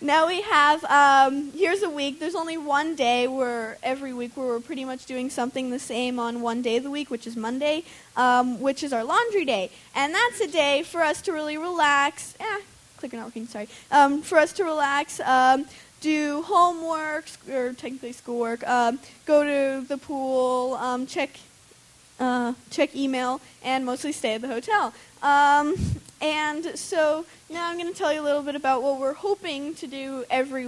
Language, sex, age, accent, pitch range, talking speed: English, female, 20-39, American, 255-305 Hz, 190 wpm